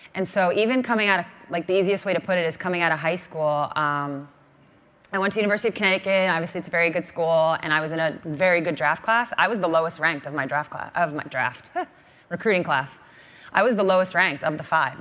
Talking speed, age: 250 wpm, 20-39